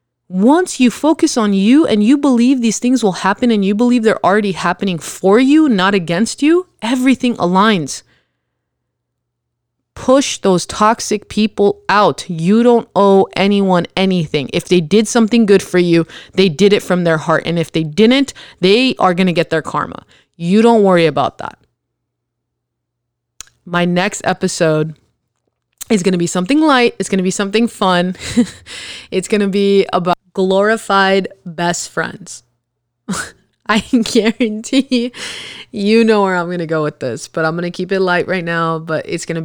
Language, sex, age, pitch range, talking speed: English, female, 20-39, 160-205 Hz, 165 wpm